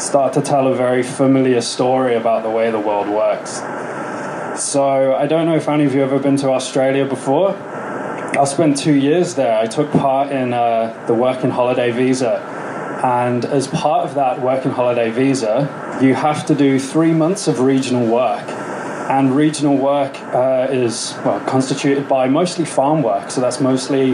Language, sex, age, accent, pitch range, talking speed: English, male, 20-39, British, 130-150 Hz, 180 wpm